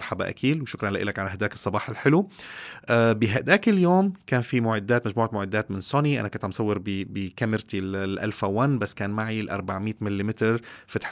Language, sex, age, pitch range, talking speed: Arabic, male, 30-49, 100-130 Hz, 175 wpm